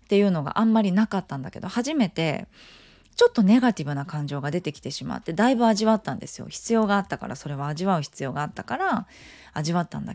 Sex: female